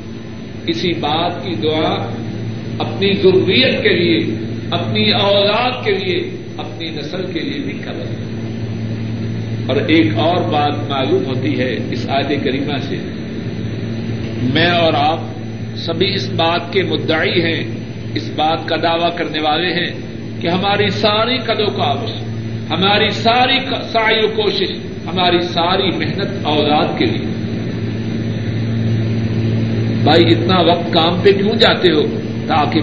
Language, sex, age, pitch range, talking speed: Urdu, male, 50-69, 115-175 Hz, 130 wpm